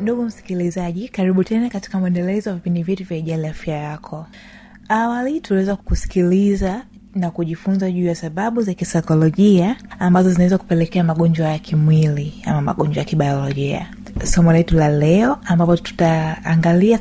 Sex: female